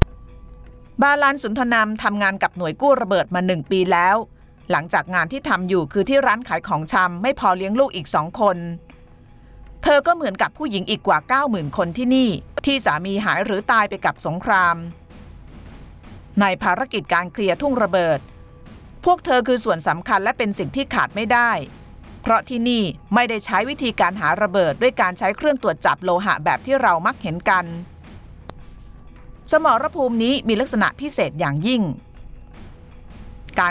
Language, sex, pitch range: Thai, female, 180-260 Hz